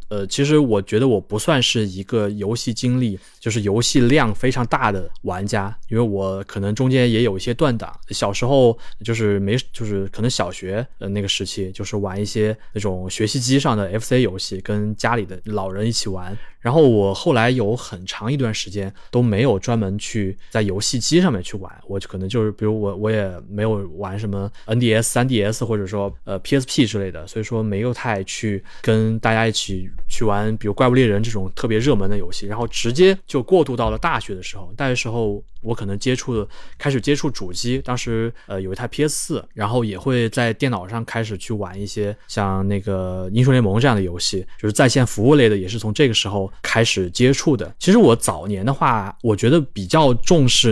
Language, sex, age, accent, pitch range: Chinese, male, 20-39, native, 100-125 Hz